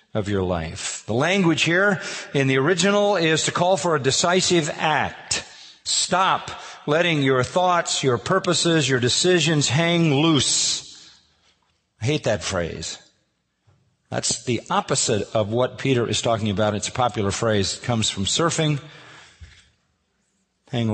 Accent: American